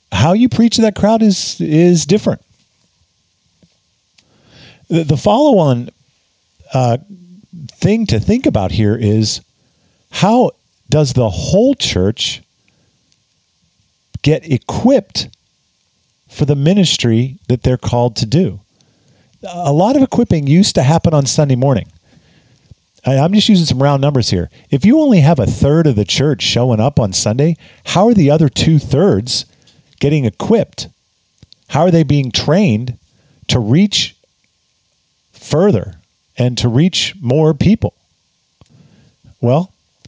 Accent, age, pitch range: American, 50-69, 120-170 Hz